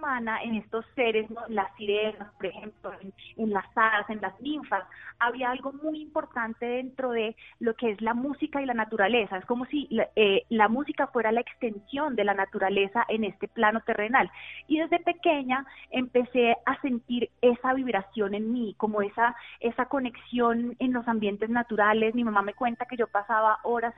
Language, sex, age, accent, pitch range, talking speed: Spanish, female, 20-39, Colombian, 215-255 Hz, 180 wpm